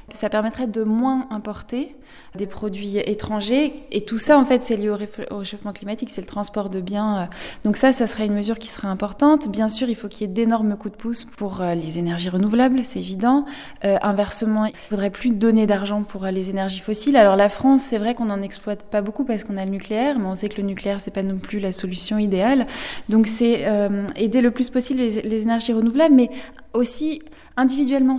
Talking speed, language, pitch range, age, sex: 220 wpm, French, 205-255 Hz, 20-39, female